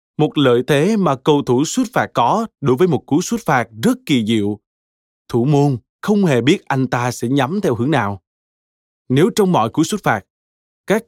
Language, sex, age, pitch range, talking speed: Vietnamese, male, 20-39, 115-155 Hz, 200 wpm